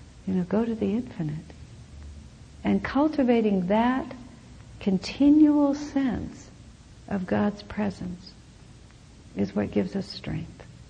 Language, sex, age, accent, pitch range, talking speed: English, female, 60-79, American, 160-220 Hz, 105 wpm